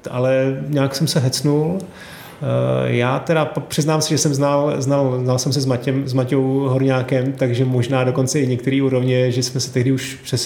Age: 30-49